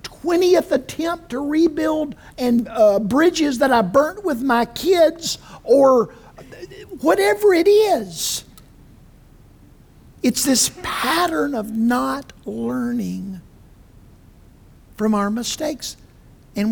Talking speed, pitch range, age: 95 wpm, 155-250 Hz, 50-69